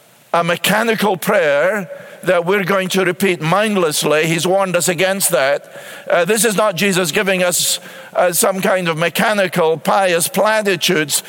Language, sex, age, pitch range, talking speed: English, male, 50-69, 165-210 Hz, 150 wpm